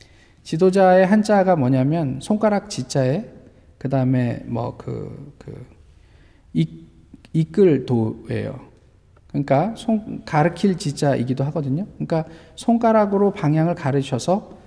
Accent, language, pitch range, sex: native, Korean, 130-200 Hz, male